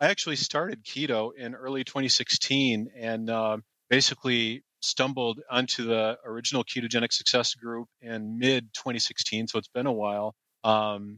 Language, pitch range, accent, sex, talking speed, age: English, 105-120 Hz, American, male, 135 wpm, 30-49